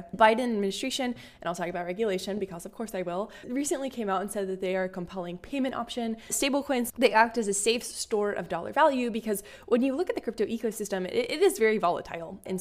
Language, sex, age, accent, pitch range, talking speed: English, female, 10-29, American, 190-240 Hz, 225 wpm